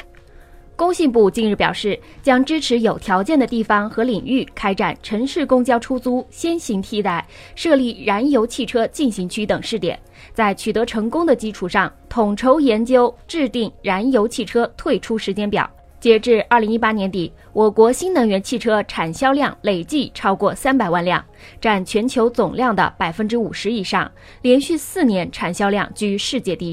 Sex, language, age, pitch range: female, Chinese, 20-39, 195-250 Hz